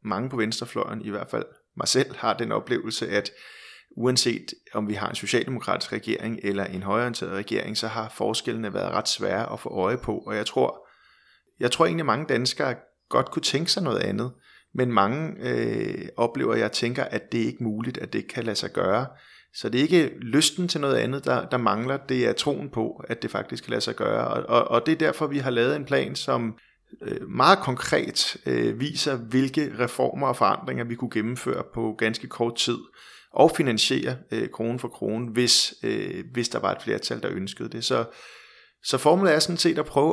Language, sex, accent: Danish, male, native